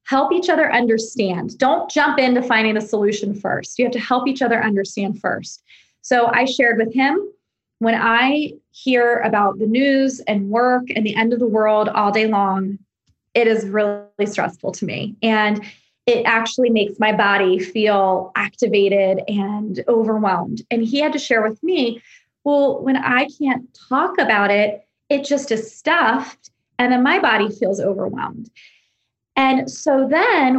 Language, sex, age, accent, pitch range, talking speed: English, female, 20-39, American, 210-255 Hz, 165 wpm